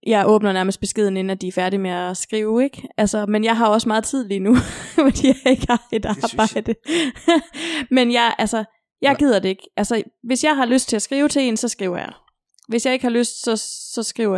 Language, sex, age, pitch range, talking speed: Danish, female, 20-39, 195-245 Hz, 235 wpm